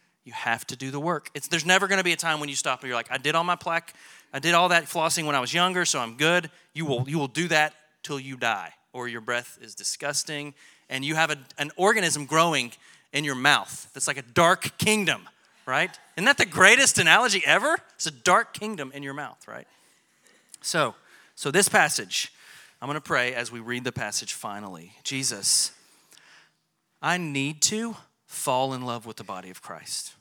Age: 30-49